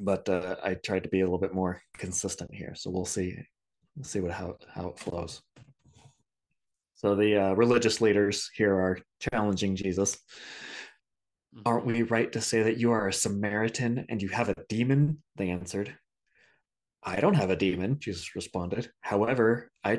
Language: English